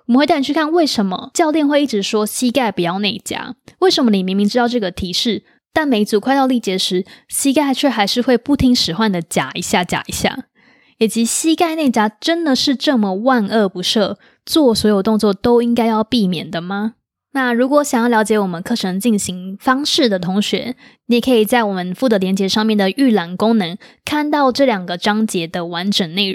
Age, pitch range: 20-39, 195-255 Hz